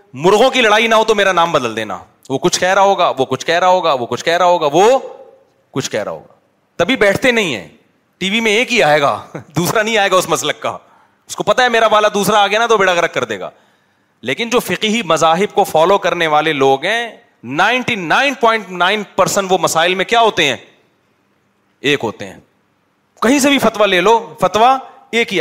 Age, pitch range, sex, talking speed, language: 30-49, 180-220 Hz, male, 215 wpm, Urdu